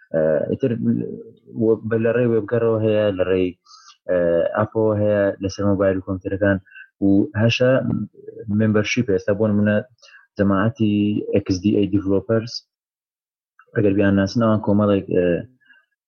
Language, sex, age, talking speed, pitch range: Arabic, male, 30-49, 60 wpm, 95-110 Hz